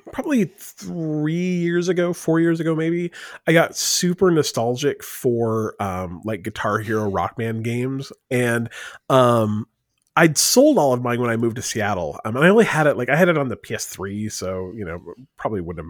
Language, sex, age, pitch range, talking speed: English, male, 30-49, 115-150 Hz, 195 wpm